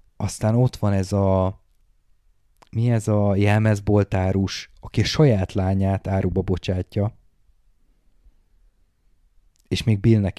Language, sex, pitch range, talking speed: Hungarian, male, 95-110 Hz, 105 wpm